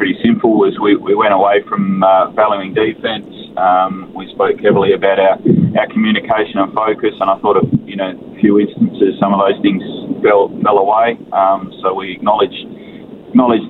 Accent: Australian